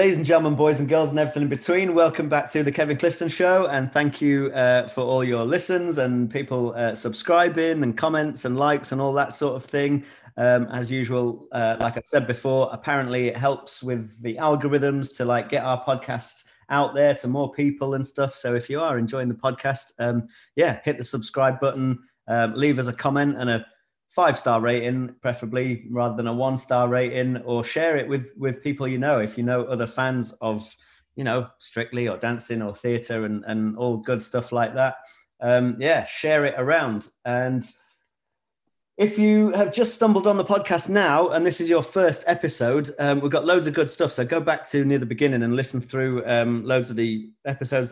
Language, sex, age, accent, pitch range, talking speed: English, male, 30-49, British, 120-150 Hz, 205 wpm